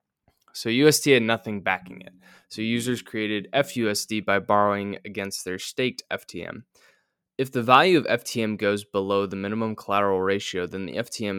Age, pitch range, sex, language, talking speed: 20-39, 95-115 Hz, male, English, 160 wpm